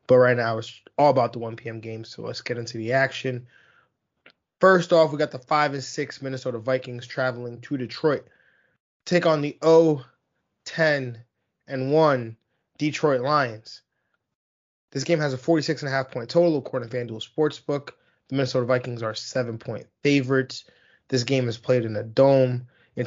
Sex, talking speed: male, 170 wpm